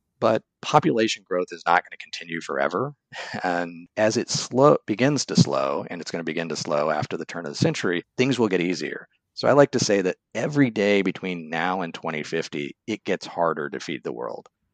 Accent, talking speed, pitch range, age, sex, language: American, 210 wpm, 85-115 Hz, 40-59, male, English